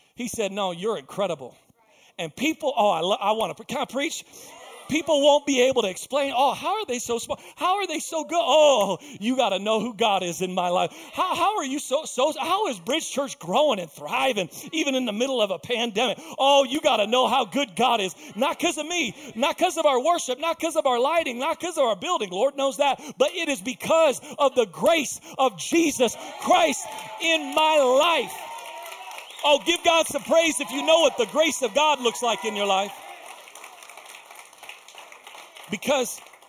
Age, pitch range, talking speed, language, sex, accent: 40-59, 210-285 Hz, 210 wpm, English, male, American